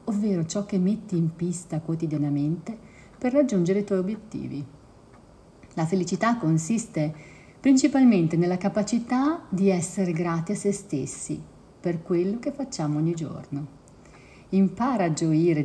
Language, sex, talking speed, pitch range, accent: Italian, female, 125 wpm, 155-200 Hz, native